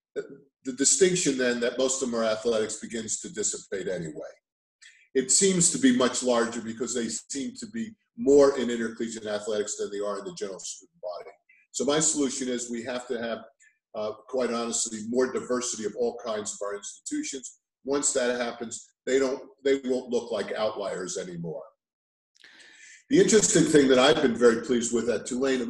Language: English